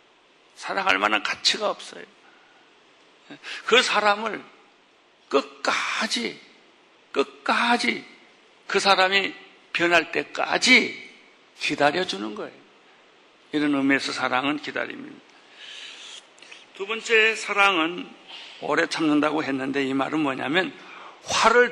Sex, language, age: male, Korean, 60-79